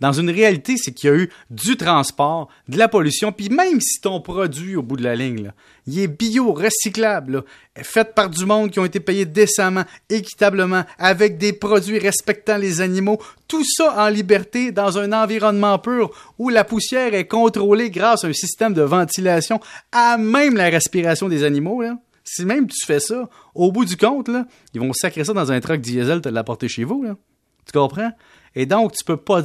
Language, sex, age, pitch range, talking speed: French, male, 30-49, 150-215 Hz, 205 wpm